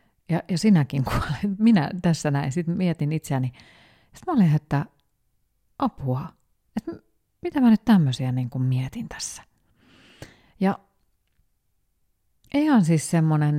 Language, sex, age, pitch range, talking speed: Finnish, female, 30-49, 140-185 Hz, 120 wpm